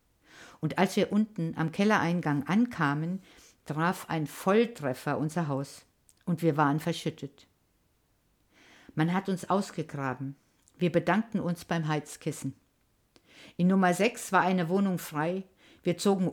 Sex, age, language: female, 50-69, German